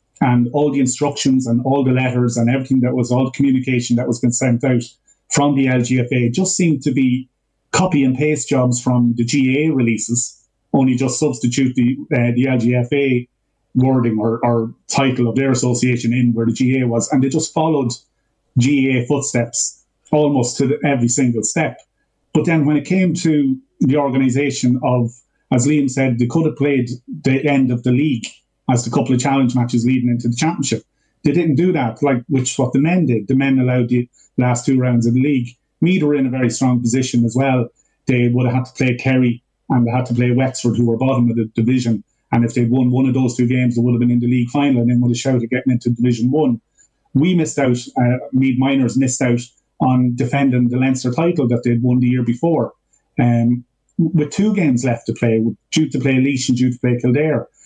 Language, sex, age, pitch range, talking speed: English, male, 30-49, 120-140 Hz, 215 wpm